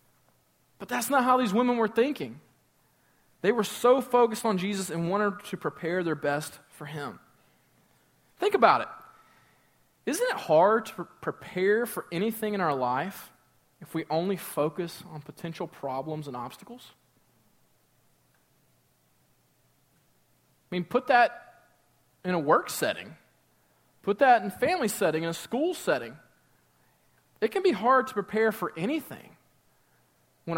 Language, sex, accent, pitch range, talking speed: English, male, American, 155-220 Hz, 140 wpm